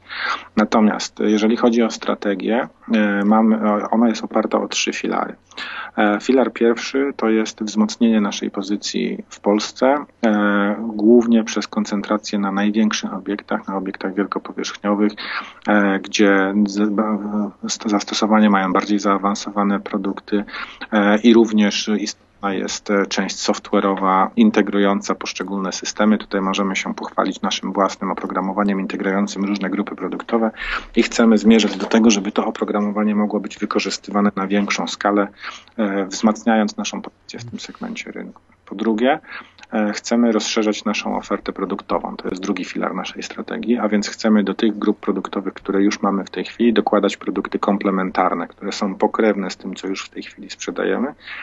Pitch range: 100-110 Hz